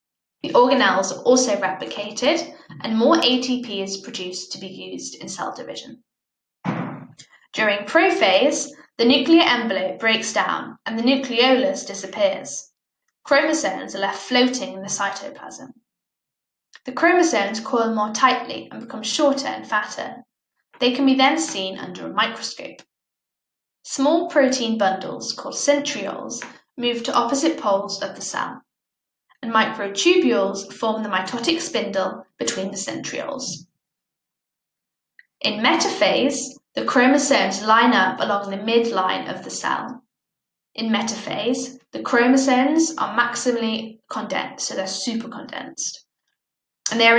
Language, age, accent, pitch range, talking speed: English, 10-29, British, 210-275 Hz, 125 wpm